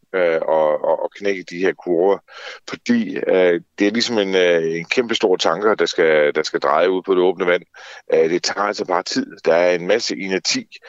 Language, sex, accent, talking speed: Danish, male, native, 215 wpm